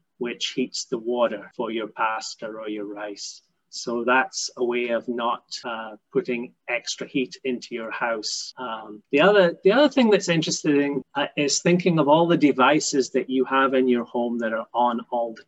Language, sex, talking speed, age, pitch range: English, male, 185 wpm, 30-49, 120-150 Hz